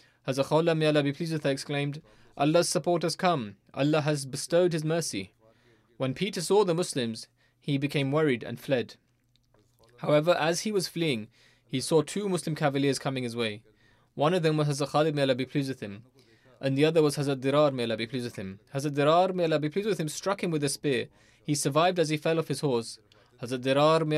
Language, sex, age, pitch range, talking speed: English, male, 20-39, 120-155 Hz, 200 wpm